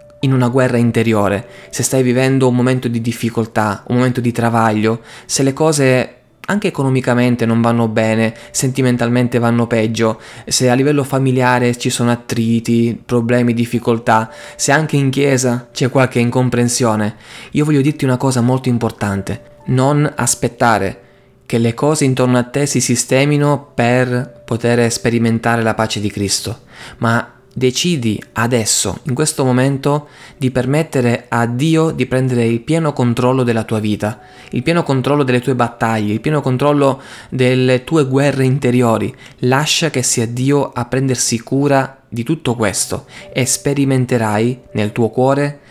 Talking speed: 145 wpm